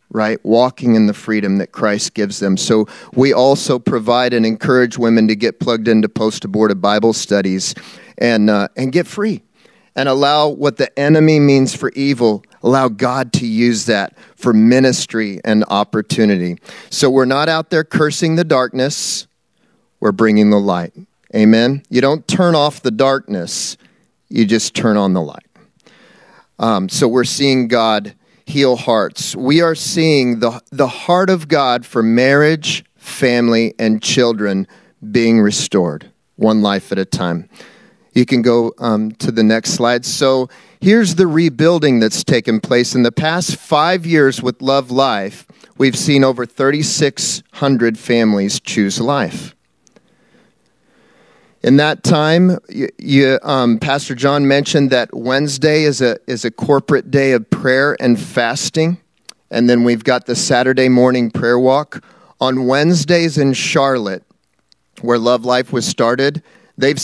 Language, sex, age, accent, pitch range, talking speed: English, male, 40-59, American, 110-145 Hz, 145 wpm